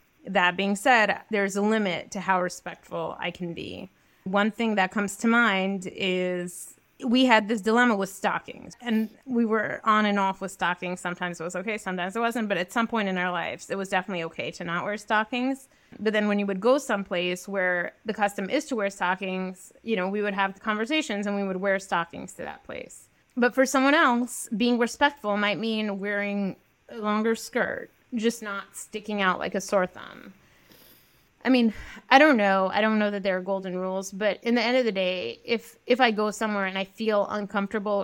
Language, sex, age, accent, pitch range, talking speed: English, female, 20-39, American, 190-225 Hz, 210 wpm